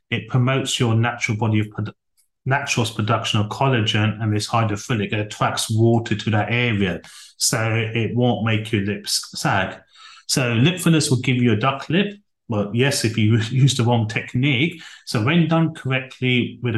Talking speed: 170 wpm